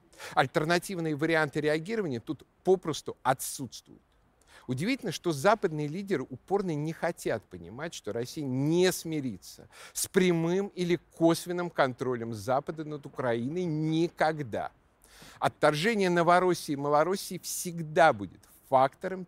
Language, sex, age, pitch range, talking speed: Russian, male, 50-69, 135-185 Hz, 105 wpm